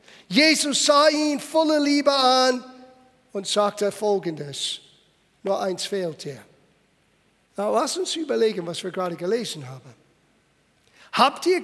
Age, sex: 50-69, male